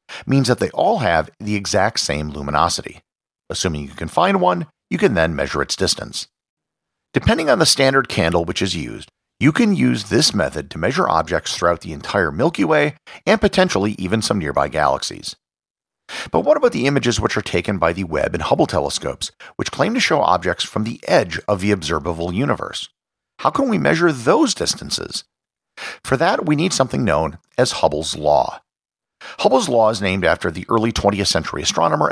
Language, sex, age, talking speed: English, male, 50-69, 185 wpm